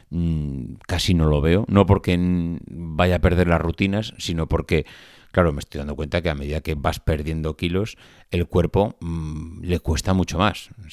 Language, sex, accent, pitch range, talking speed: Spanish, male, Spanish, 85-100 Hz, 180 wpm